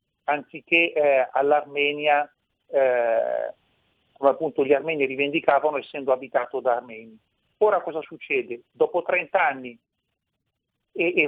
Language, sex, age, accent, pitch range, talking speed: Italian, male, 40-59, native, 145-185 Hz, 110 wpm